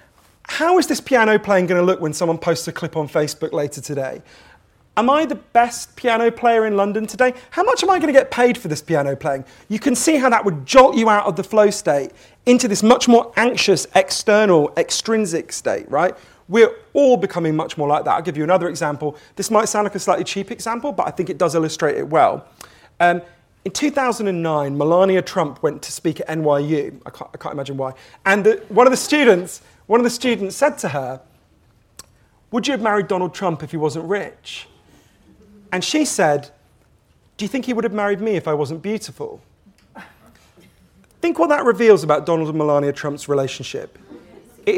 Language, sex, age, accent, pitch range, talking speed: English, male, 30-49, British, 155-235 Hz, 200 wpm